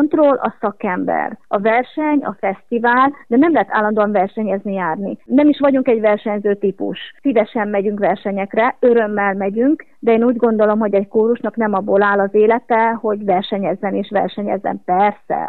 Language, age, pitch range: Hungarian, 30-49, 200-240 Hz